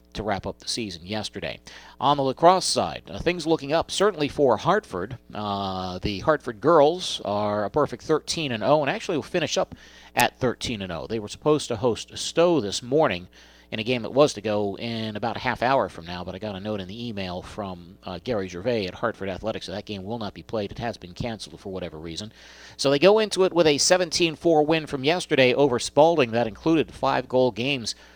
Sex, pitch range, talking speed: male, 105-140 Hz, 215 wpm